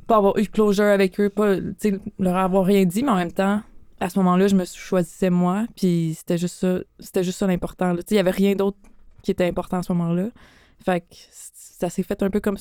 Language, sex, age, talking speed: French, female, 20-39, 245 wpm